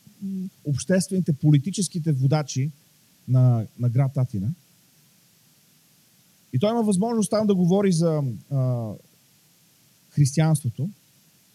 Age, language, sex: 40-59, Bulgarian, male